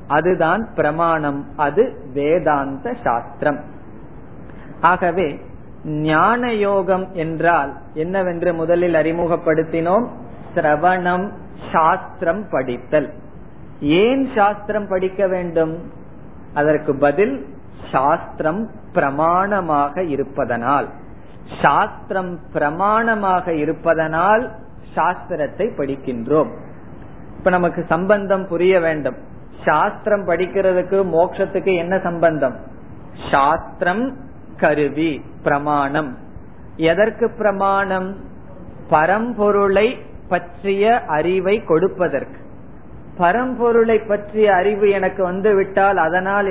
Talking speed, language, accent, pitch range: 65 wpm, Tamil, native, 155-195 Hz